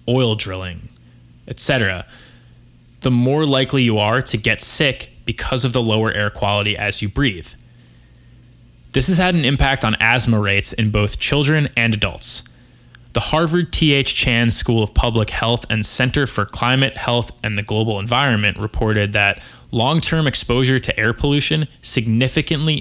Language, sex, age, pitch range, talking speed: English, male, 20-39, 105-135 Hz, 155 wpm